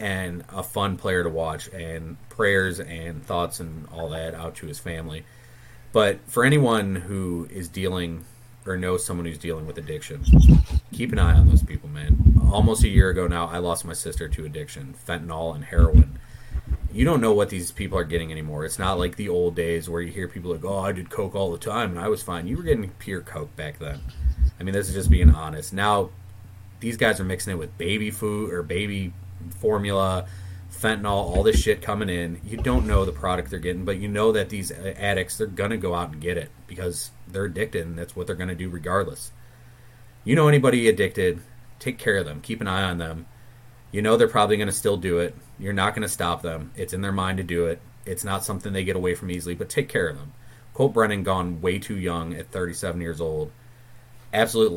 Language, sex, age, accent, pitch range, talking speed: English, male, 30-49, American, 85-105 Hz, 225 wpm